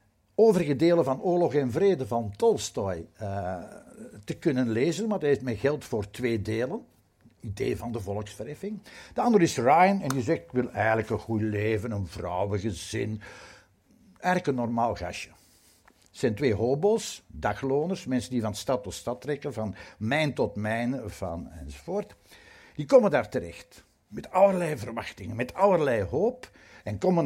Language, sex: English, male